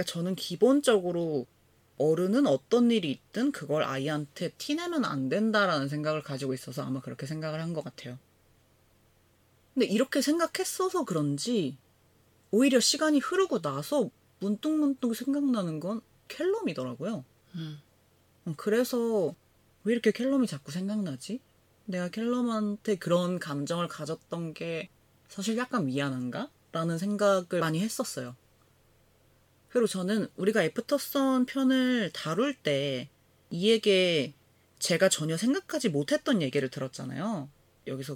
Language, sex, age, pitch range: Korean, female, 30-49, 140-230 Hz